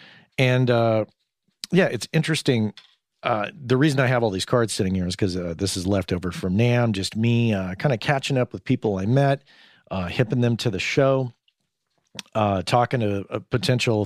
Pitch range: 100-140 Hz